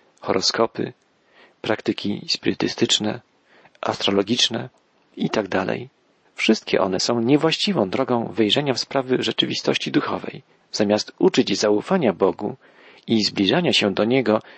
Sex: male